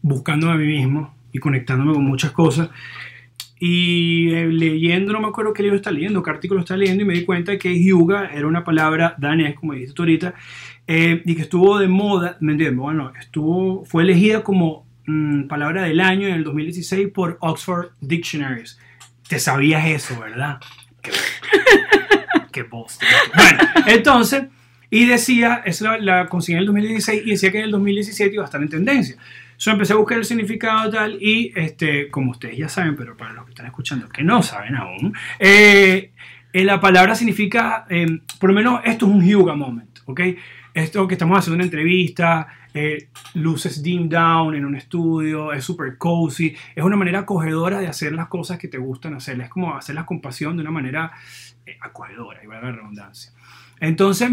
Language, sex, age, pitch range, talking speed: English, male, 30-49, 150-195 Hz, 185 wpm